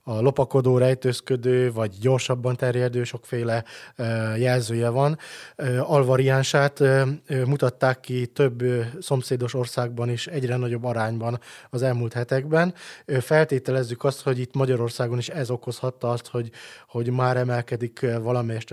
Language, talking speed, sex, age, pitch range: Hungarian, 115 wpm, male, 20-39, 120-140 Hz